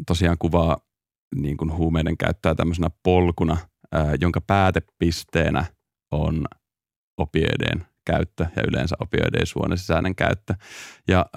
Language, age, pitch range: Finnish, 30-49, 85-100 Hz